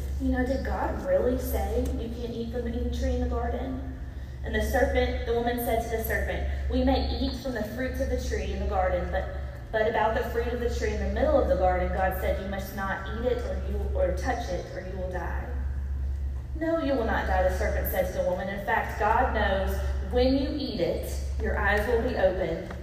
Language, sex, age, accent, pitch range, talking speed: English, female, 20-39, American, 65-70 Hz, 235 wpm